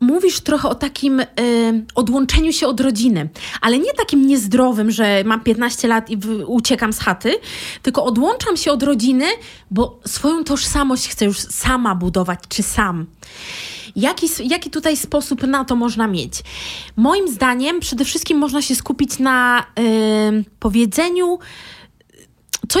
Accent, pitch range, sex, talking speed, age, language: native, 235-315 Hz, female, 135 wpm, 20-39, Polish